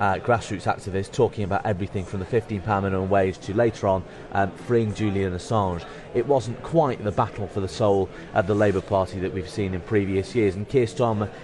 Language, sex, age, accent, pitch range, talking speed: English, male, 30-49, British, 95-120 Hz, 205 wpm